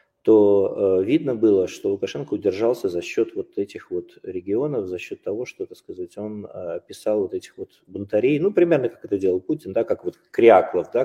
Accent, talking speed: native, 200 wpm